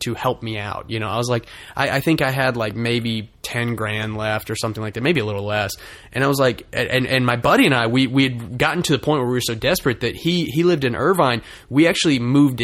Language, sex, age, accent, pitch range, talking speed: English, male, 20-39, American, 110-125 Hz, 275 wpm